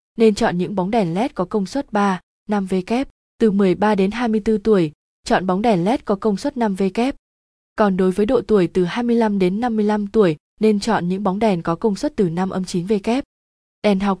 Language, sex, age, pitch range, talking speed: Vietnamese, female, 20-39, 190-230 Hz, 215 wpm